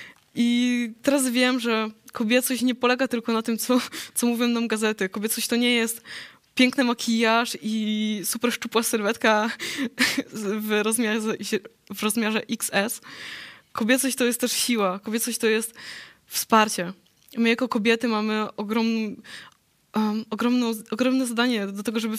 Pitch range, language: 220-255 Hz, Polish